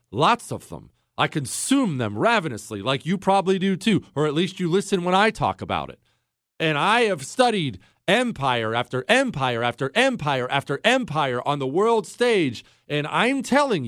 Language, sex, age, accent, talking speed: English, male, 40-59, American, 175 wpm